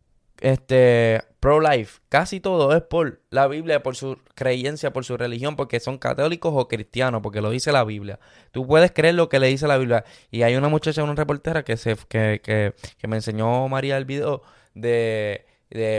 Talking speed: 190 wpm